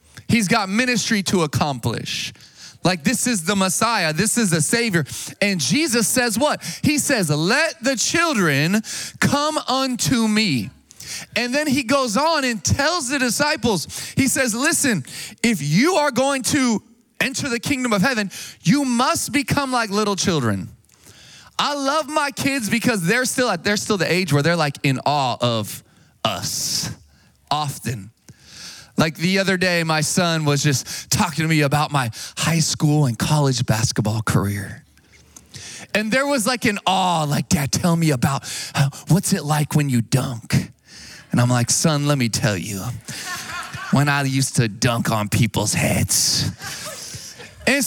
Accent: American